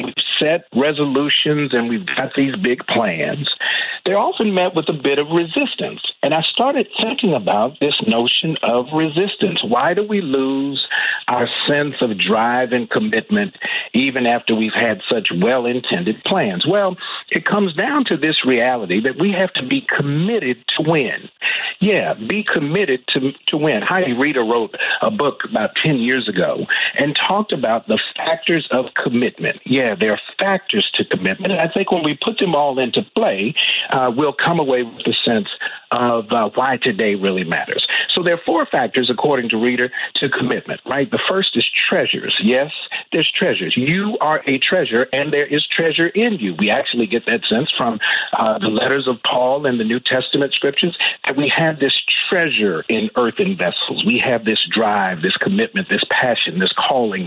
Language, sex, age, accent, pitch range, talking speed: English, male, 50-69, American, 125-185 Hz, 180 wpm